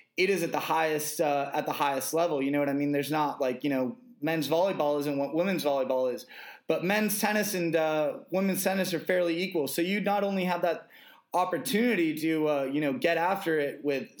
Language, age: English, 20-39